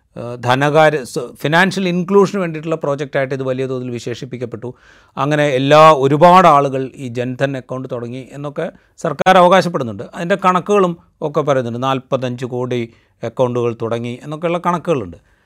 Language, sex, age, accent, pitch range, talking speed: Malayalam, male, 30-49, native, 120-155 Hz, 115 wpm